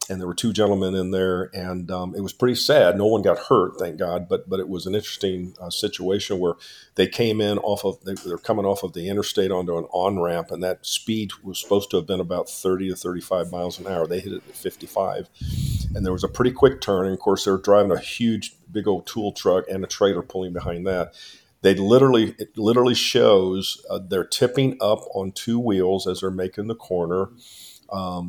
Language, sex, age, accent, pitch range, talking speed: English, male, 50-69, American, 90-110 Hz, 225 wpm